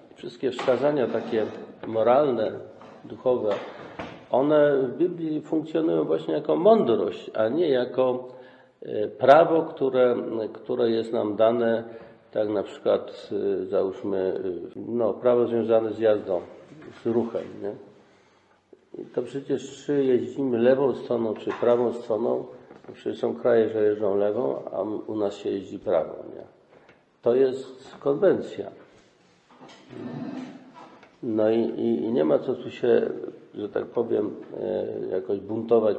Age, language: 50-69, Polish